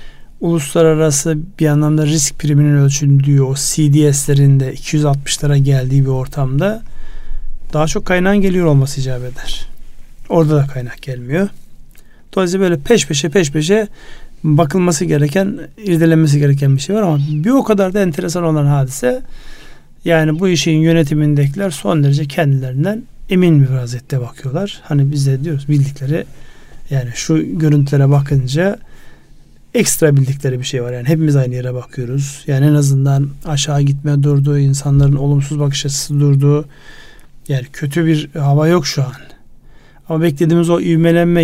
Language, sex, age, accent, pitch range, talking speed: Turkish, male, 40-59, native, 140-165 Hz, 140 wpm